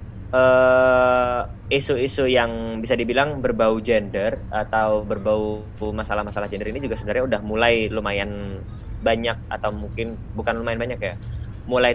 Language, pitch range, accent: Indonesian, 100-120 Hz, native